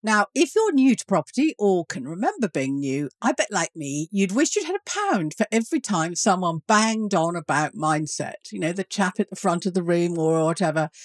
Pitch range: 175-260 Hz